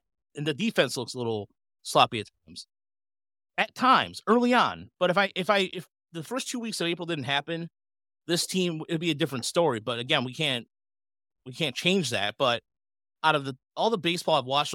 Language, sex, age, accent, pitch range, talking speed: English, male, 30-49, American, 115-165 Hz, 210 wpm